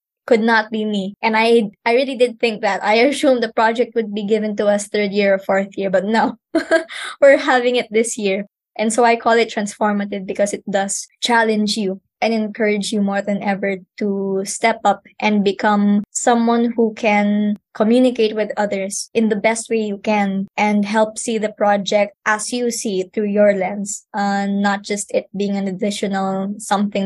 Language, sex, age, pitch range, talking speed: English, male, 20-39, 200-230 Hz, 190 wpm